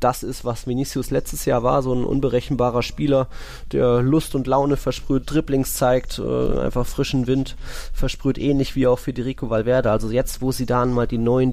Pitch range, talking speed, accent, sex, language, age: 105-130 Hz, 185 wpm, German, male, German, 20-39